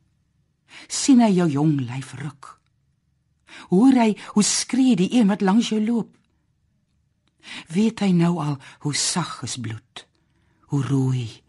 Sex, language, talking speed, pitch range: female, French, 135 wpm, 140-200 Hz